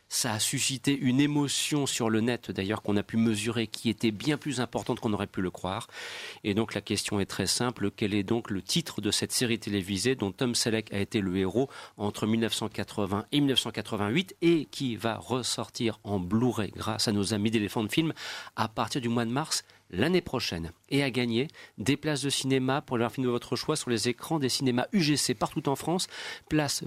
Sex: male